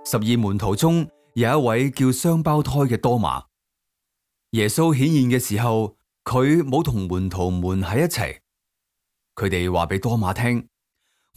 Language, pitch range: Chinese, 95-140 Hz